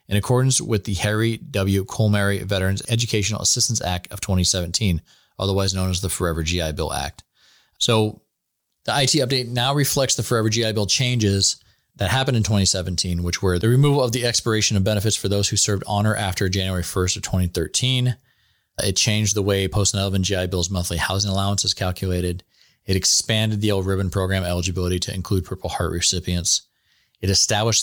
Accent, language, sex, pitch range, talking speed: American, English, male, 95-110 Hz, 175 wpm